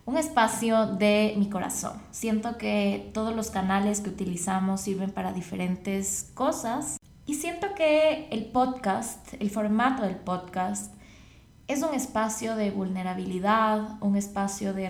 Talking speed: 135 wpm